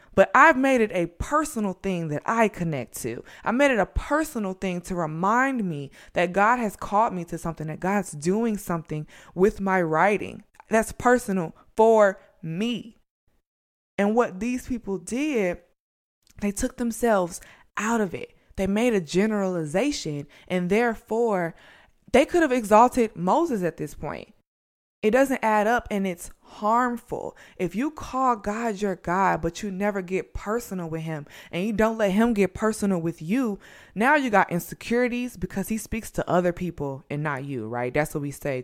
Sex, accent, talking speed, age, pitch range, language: female, American, 170 wpm, 20-39, 170-225 Hz, English